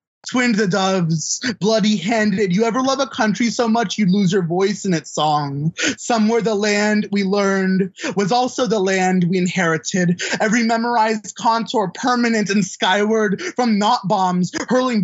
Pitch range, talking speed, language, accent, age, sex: 185-235 Hz, 155 wpm, English, American, 20-39, male